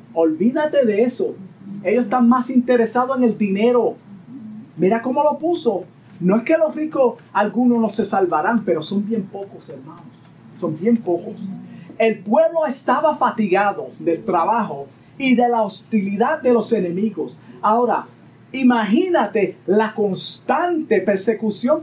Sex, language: male, Spanish